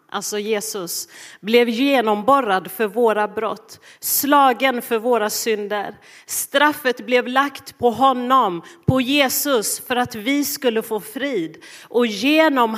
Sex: female